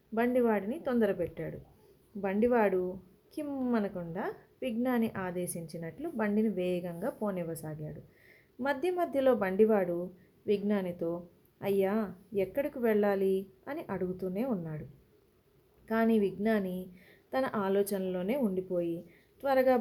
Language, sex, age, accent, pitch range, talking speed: Telugu, female, 30-49, native, 185-230 Hz, 75 wpm